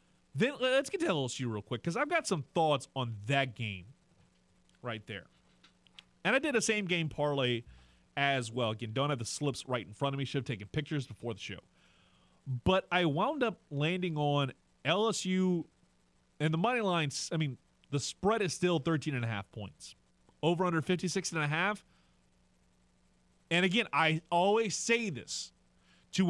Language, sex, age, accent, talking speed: English, male, 30-49, American, 165 wpm